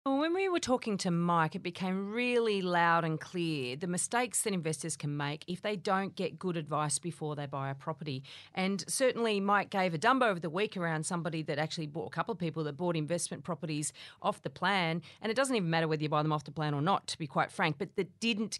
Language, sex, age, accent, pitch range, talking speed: English, female, 40-59, Australian, 155-210 Hz, 245 wpm